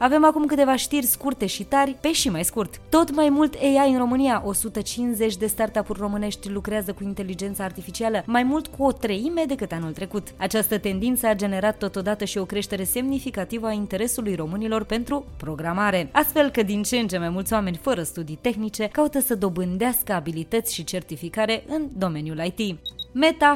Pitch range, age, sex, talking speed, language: 185-245 Hz, 20-39, female, 175 wpm, Romanian